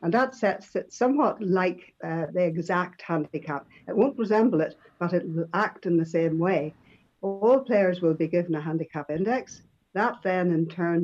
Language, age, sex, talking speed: English, 60-79, female, 185 wpm